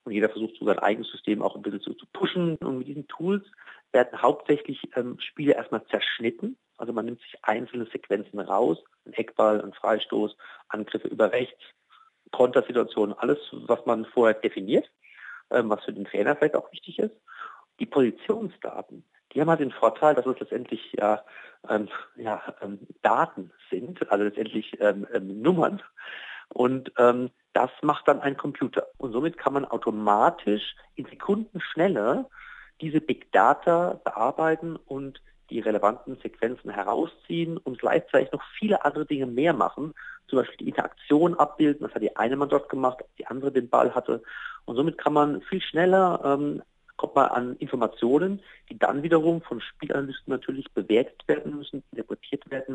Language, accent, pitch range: German, German, 115-165 Hz